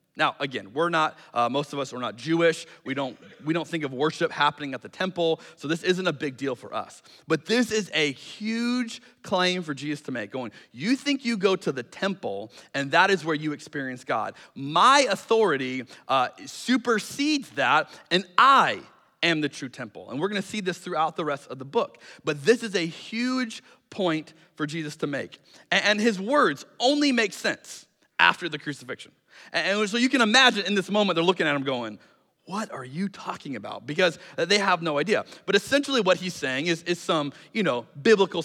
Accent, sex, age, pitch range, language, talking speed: American, male, 30-49, 160-245 Hz, English, 205 wpm